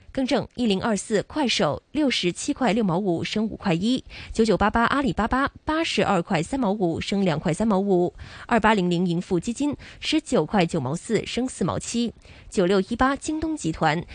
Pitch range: 180-250 Hz